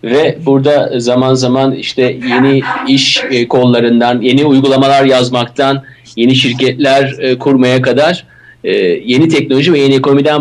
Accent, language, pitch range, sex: native, Turkish, 135-200 Hz, male